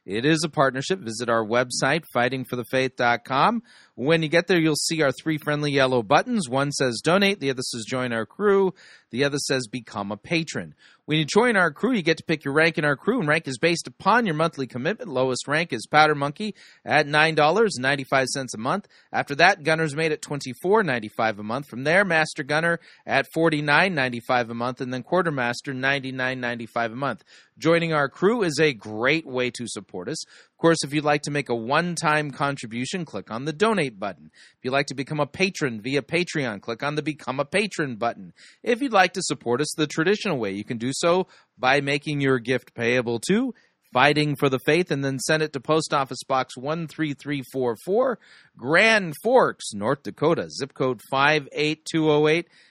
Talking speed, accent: 190 wpm, American